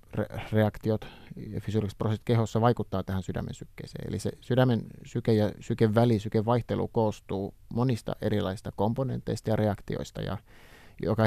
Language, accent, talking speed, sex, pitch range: Finnish, native, 140 wpm, male, 100-120 Hz